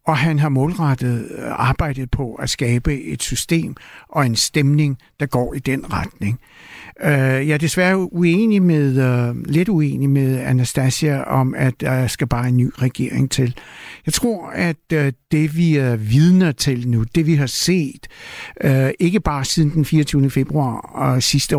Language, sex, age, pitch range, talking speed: Danish, male, 60-79, 130-165 Hz, 155 wpm